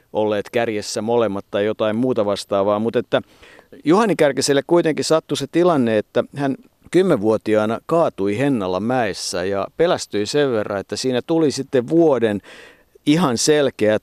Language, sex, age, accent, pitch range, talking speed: Finnish, male, 50-69, native, 110-135 Hz, 135 wpm